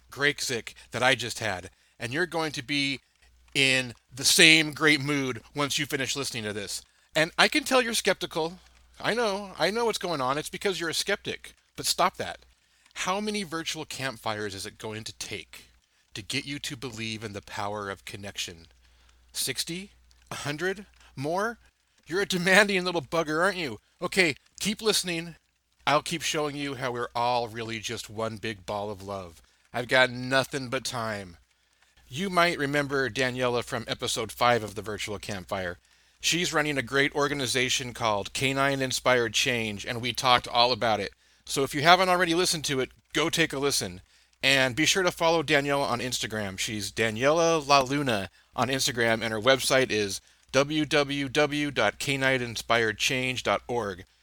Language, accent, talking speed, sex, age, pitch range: English, American, 165 wpm, male, 40-59, 110-160 Hz